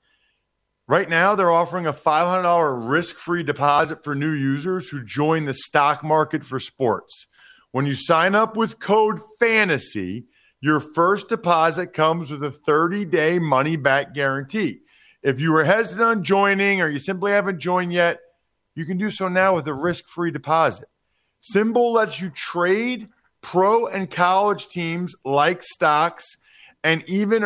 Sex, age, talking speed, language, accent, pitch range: male, 40-59, 145 wpm, English, American, 155-195 Hz